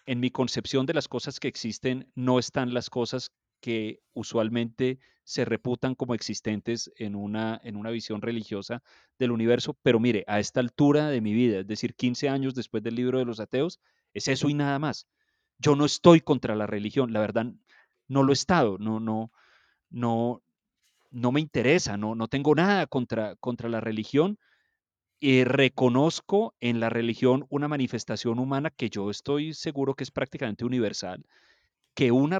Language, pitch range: Spanish, 115-135 Hz